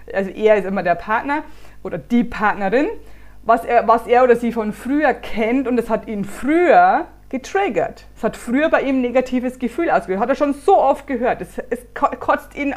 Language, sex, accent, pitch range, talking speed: German, female, German, 200-275 Hz, 205 wpm